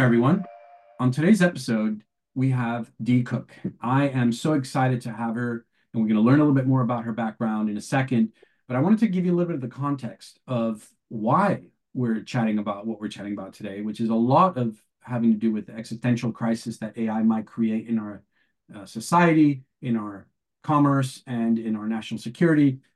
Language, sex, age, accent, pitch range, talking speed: English, male, 40-59, American, 115-145 Hz, 205 wpm